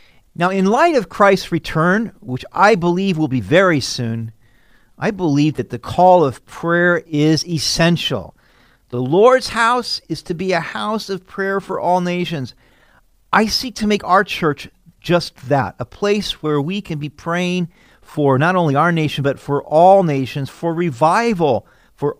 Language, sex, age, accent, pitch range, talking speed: English, male, 40-59, American, 130-180 Hz, 170 wpm